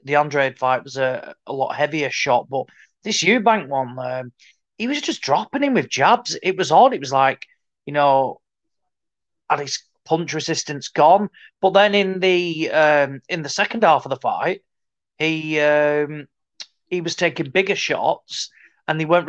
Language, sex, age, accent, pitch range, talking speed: English, male, 30-49, British, 135-170 Hz, 175 wpm